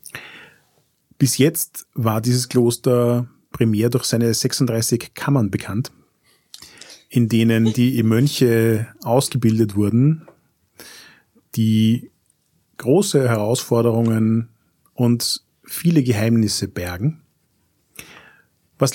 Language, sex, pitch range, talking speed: German, male, 105-125 Hz, 80 wpm